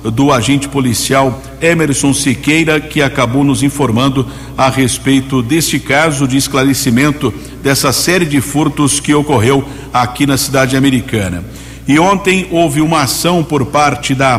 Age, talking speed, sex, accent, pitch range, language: 60-79, 140 wpm, male, Brazilian, 130-150 Hz, Portuguese